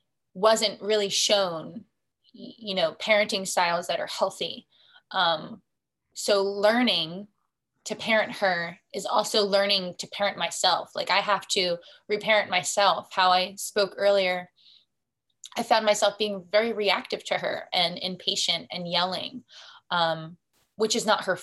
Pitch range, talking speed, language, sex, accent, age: 180-215 Hz, 135 wpm, English, female, American, 20-39